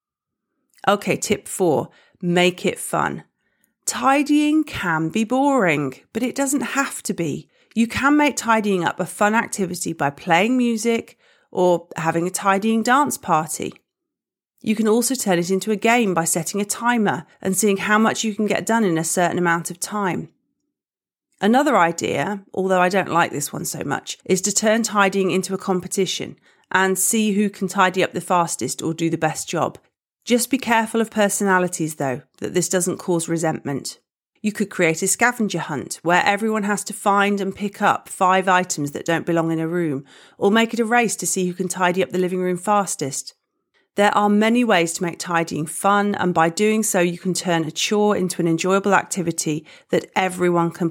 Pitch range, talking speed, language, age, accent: 175-215 Hz, 190 wpm, English, 40-59, British